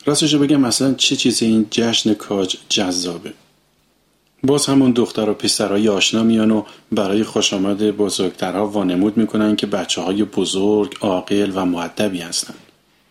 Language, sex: Persian, male